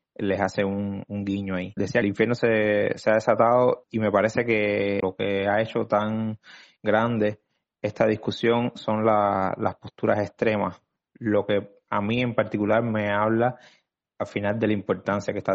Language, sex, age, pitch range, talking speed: Spanish, male, 20-39, 100-115 Hz, 175 wpm